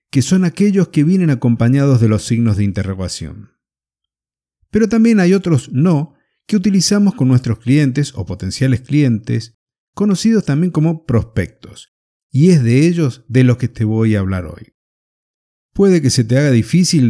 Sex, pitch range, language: male, 110-160 Hz, Spanish